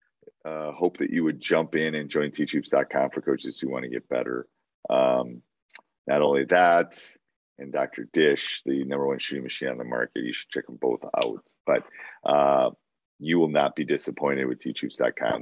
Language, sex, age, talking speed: English, male, 40-59, 185 wpm